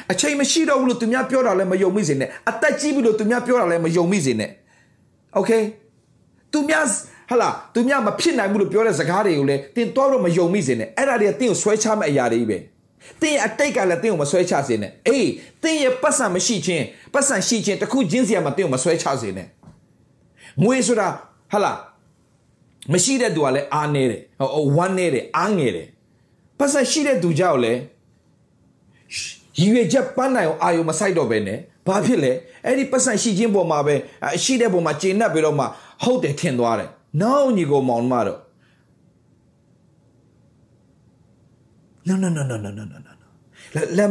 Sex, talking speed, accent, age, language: male, 75 wpm, Malaysian, 30-49, English